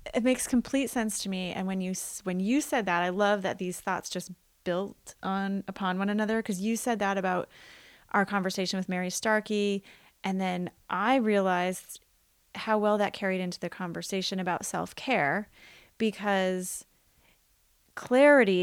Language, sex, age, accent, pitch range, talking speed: English, female, 30-49, American, 185-220 Hz, 160 wpm